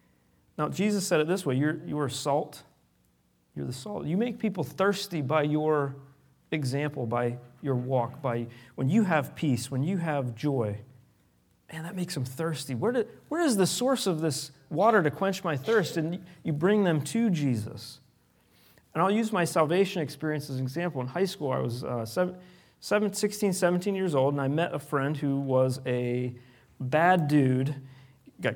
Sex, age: male, 40-59